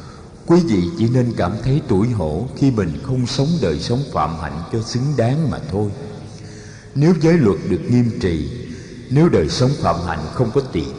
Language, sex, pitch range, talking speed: Vietnamese, male, 95-140 Hz, 190 wpm